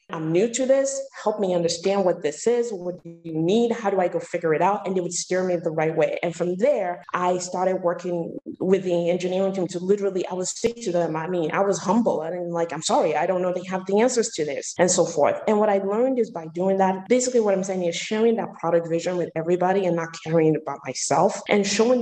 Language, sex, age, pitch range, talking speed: English, female, 20-39, 160-195 Hz, 255 wpm